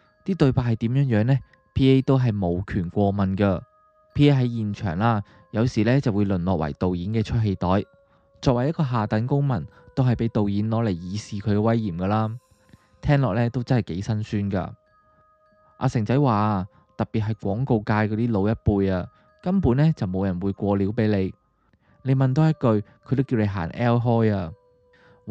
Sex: male